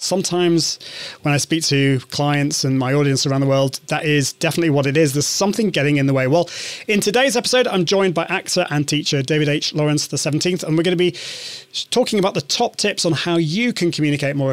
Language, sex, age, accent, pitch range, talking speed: English, male, 30-49, British, 145-185 Hz, 225 wpm